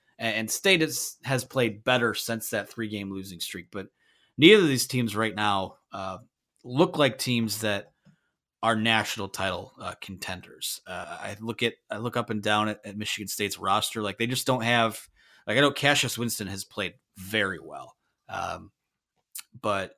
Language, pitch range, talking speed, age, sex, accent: English, 95-120 Hz, 175 wpm, 30-49, male, American